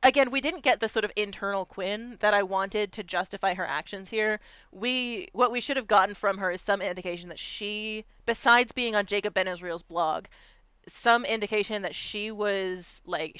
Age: 30-49